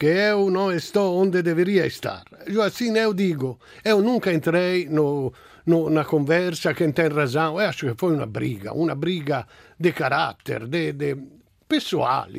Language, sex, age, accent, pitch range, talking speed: Portuguese, male, 50-69, Italian, 150-195 Hz, 165 wpm